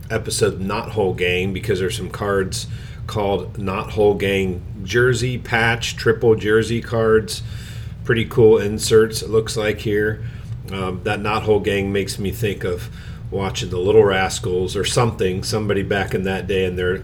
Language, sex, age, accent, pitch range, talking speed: English, male, 40-59, American, 95-115 Hz, 160 wpm